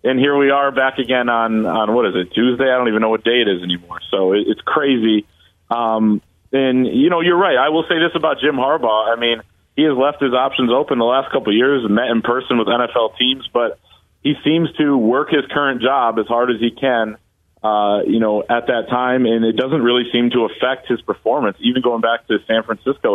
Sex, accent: male, American